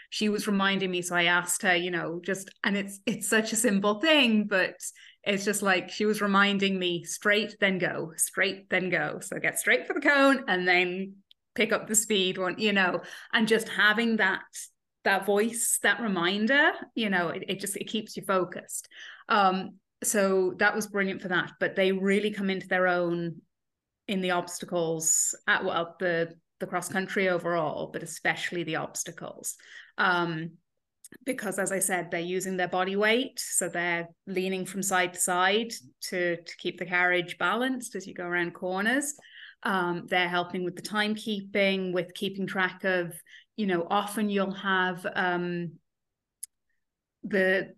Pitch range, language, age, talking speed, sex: 180-210 Hz, English, 30-49, 170 wpm, female